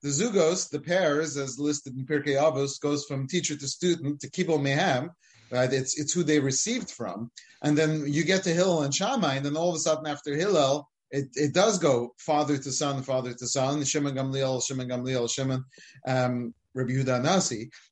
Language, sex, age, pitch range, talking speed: English, male, 30-49, 140-175 Hz, 190 wpm